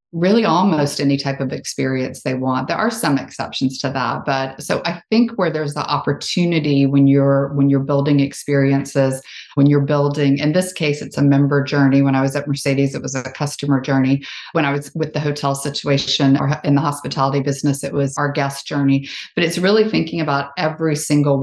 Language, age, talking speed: English, 40-59, 200 wpm